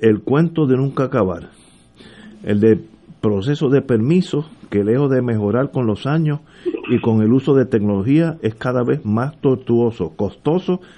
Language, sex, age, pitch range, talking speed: Spanish, male, 50-69, 115-145 Hz, 160 wpm